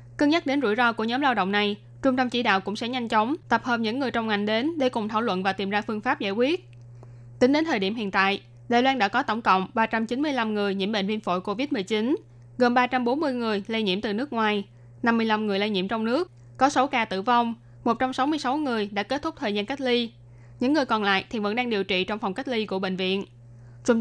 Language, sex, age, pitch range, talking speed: Vietnamese, female, 10-29, 190-245 Hz, 250 wpm